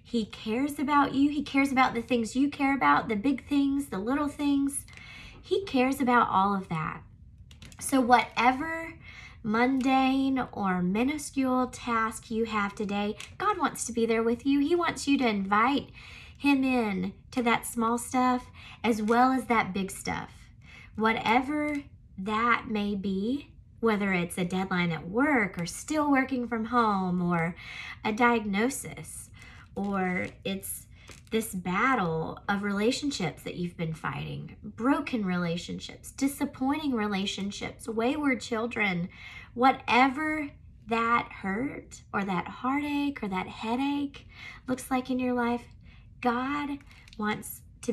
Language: English